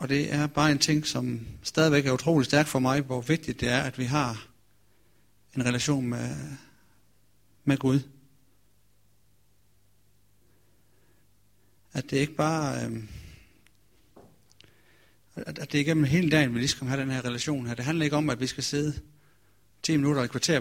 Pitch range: 105-140 Hz